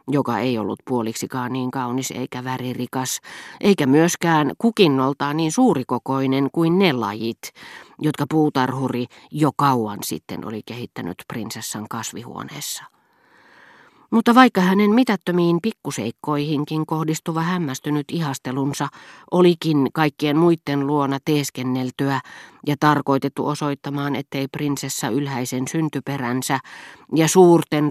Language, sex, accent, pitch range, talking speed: Finnish, female, native, 125-160 Hz, 100 wpm